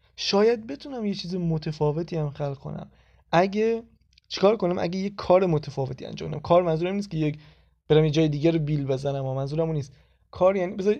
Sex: male